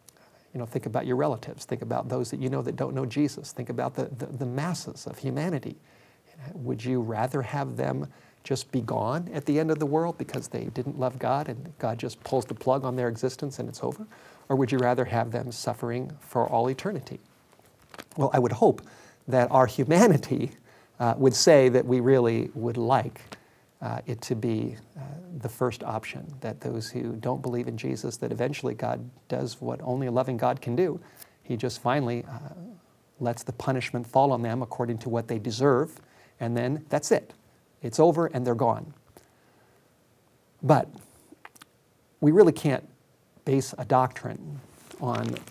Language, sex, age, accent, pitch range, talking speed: English, male, 50-69, American, 120-140 Hz, 180 wpm